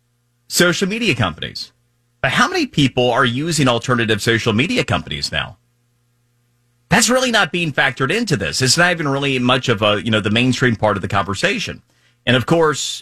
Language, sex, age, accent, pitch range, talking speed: English, male, 30-49, American, 110-135 Hz, 190 wpm